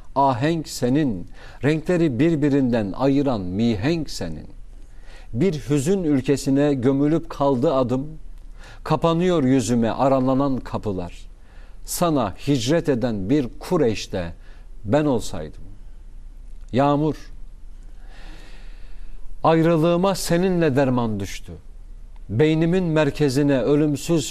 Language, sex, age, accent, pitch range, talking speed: Turkish, male, 50-69, native, 110-155 Hz, 80 wpm